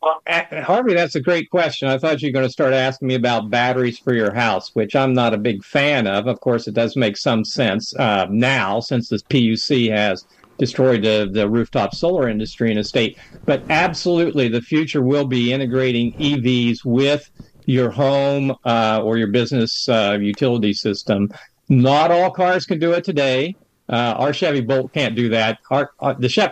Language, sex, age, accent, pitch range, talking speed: English, male, 50-69, American, 120-170 Hz, 190 wpm